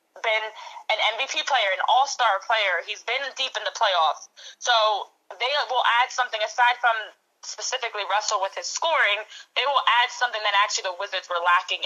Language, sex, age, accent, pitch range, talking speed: English, female, 20-39, American, 195-255 Hz, 175 wpm